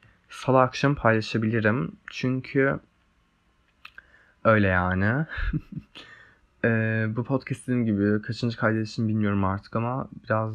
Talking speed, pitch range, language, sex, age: 90 wpm, 105-130 Hz, Turkish, male, 20-39